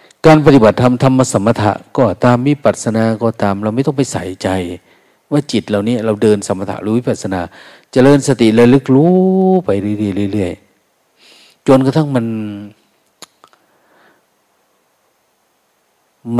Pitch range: 100-125 Hz